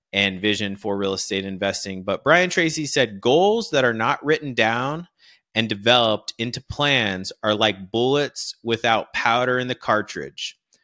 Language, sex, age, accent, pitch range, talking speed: English, male, 30-49, American, 100-125 Hz, 155 wpm